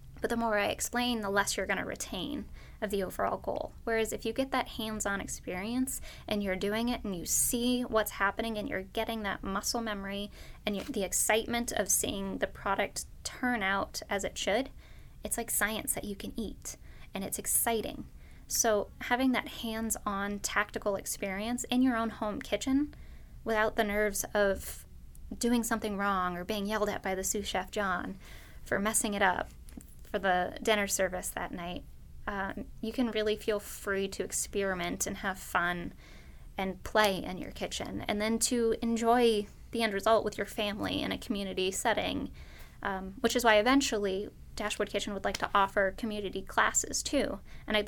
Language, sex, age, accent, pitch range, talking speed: English, female, 20-39, American, 195-230 Hz, 175 wpm